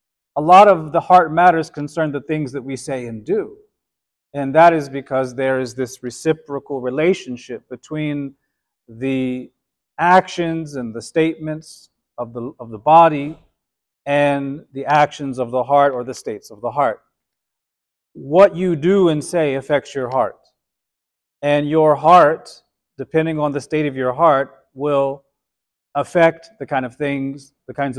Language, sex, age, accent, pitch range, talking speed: English, male, 40-59, American, 130-160 Hz, 155 wpm